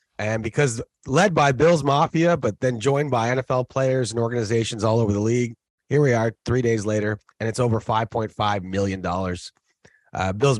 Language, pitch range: English, 115-175 Hz